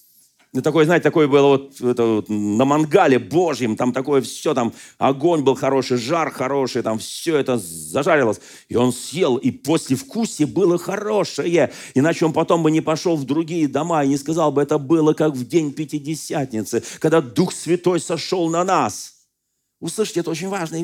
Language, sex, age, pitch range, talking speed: Russian, male, 40-59, 125-170 Hz, 170 wpm